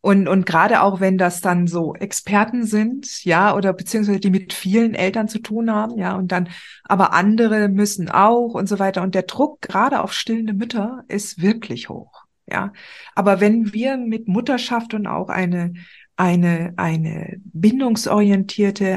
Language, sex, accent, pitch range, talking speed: German, female, German, 185-220 Hz, 165 wpm